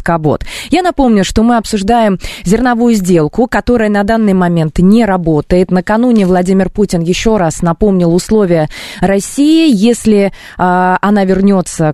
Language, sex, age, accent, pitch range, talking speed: Russian, female, 20-39, native, 175-225 Hz, 130 wpm